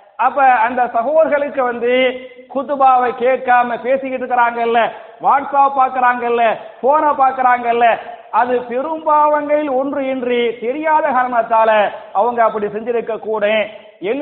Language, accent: Tamil, native